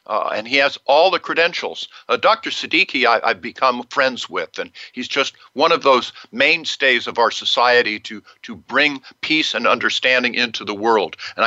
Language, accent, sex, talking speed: English, American, male, 185 wpm